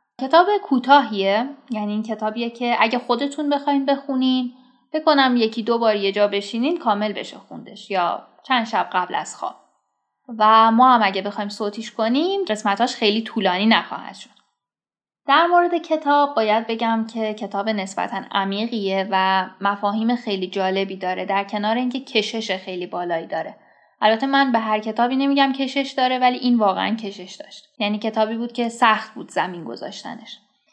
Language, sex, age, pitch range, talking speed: Persian, female, 10-29, 205-260 Hz, 155 wpm